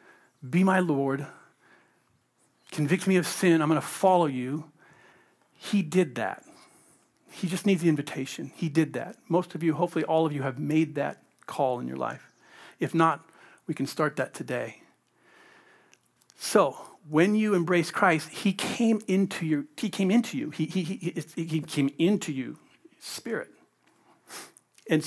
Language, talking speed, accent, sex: English, 160 wpm, American, male